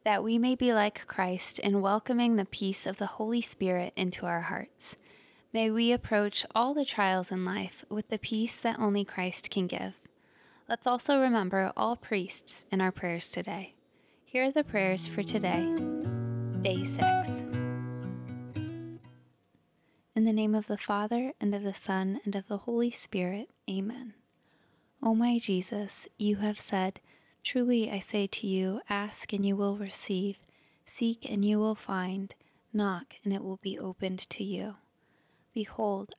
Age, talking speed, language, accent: 20-39, 160 wpm, English, American